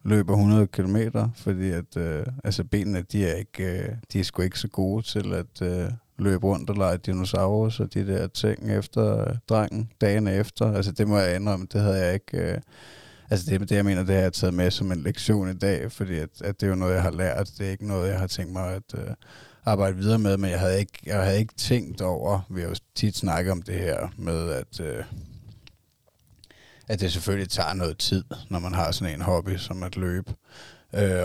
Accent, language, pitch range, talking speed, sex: native, Danish, 90-105 Hz, 225 wpm, male